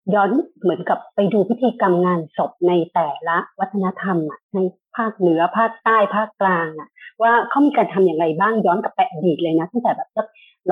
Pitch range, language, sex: 180-230 Hz, Thai, female